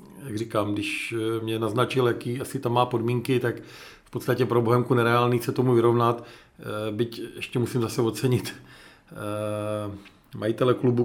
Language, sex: Czech, male